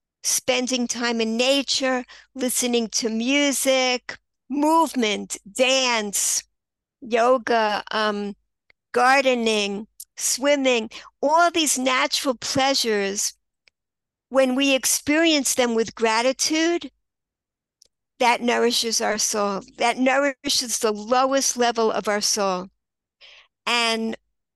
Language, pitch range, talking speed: English, 225-270 Hz, 90 wpm